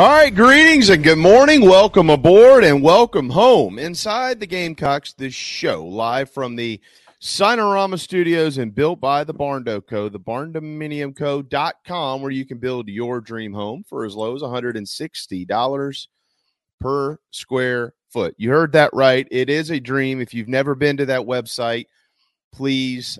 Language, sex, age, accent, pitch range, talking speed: English, male, 40-59, American, 110-145 Hz, 155 wpm